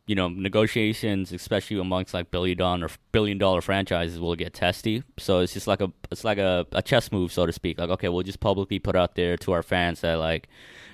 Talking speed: 225 wpm